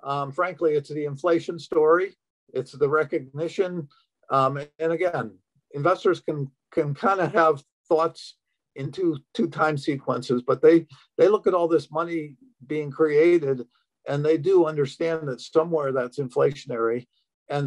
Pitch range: 130-160 Hz